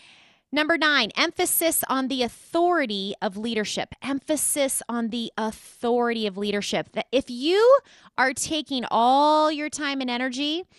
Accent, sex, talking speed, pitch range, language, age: American, female, 135 wpm, 195-255 Hz, English, 20-39